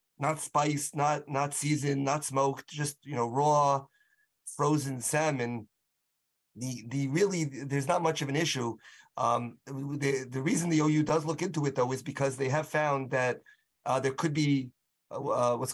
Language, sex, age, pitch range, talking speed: English, male, 30-49, 125-150 Hz, 170 wpm